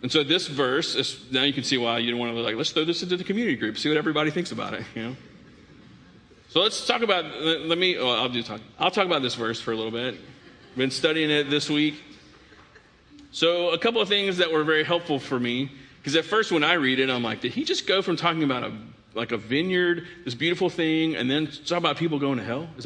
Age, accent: 40-59, American